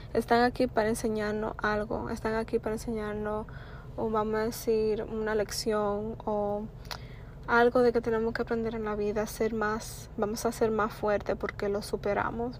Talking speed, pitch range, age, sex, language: 165 wpm, 200-225 Hz, 20-39, female, English